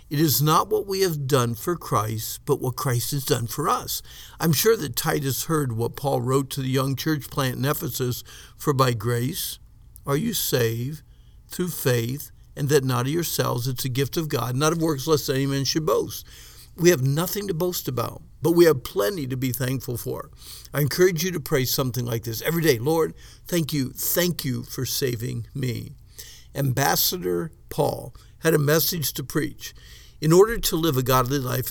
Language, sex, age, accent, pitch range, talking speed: English, male, 60-79, American, 125-155 Hz, 195 wpm